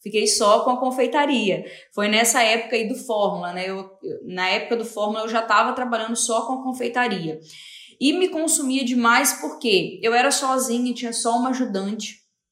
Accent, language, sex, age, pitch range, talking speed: Brazilian, Portuguese, female, 10-29, 200-245 Hz, 185 wpm